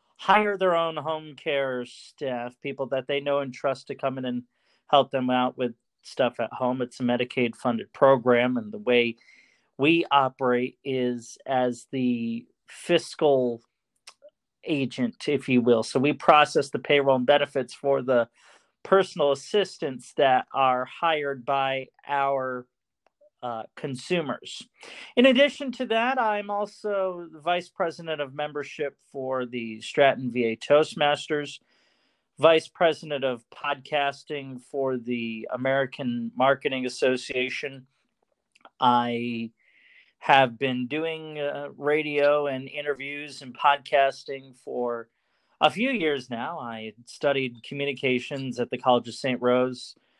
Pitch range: 125-145 Hz